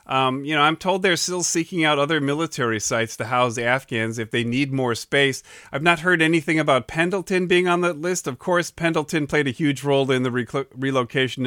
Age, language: 40-59, English